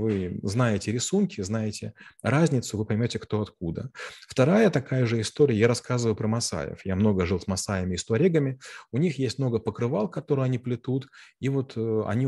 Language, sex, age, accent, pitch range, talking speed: Russian, male, 30-49, native, 100-125 Hz, 175 wpm